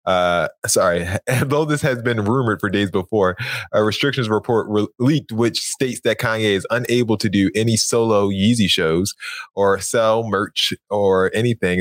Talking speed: 165 wpm